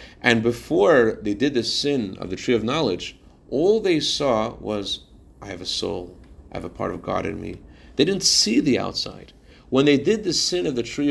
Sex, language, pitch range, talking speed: male, English, 90-130 Hz, 215 wpm